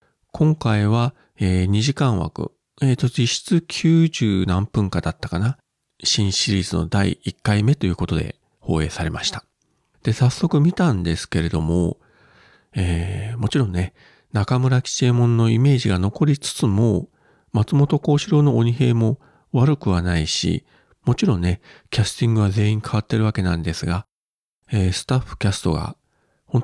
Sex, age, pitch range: male, 40-59, 95-135 Hz